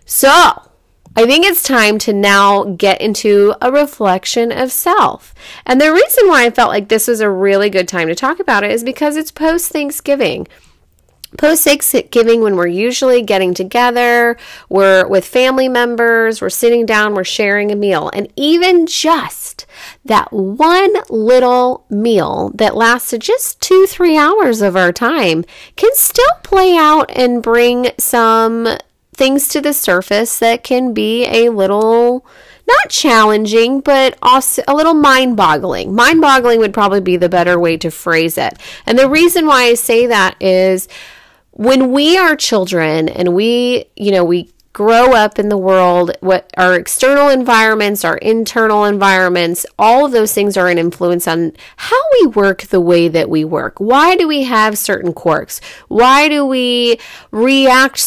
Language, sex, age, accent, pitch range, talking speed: English, female, 30-49, American, 195-270 Hz, 160 wpm